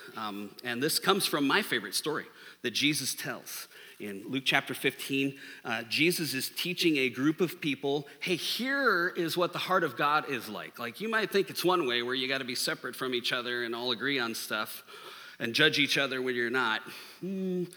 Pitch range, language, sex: 130-175 Hz, English, male